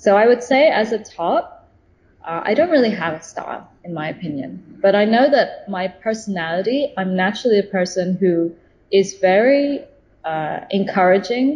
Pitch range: 175-215 Hz